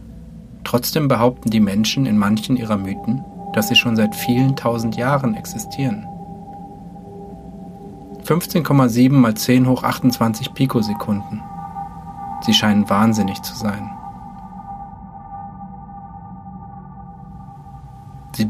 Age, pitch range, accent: 40-59, 105-135 Hz, German